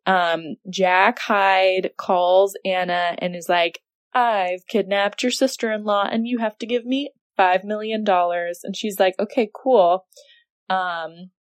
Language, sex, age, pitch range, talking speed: English, female, 20-39, 180-245 Hz, 135 wpm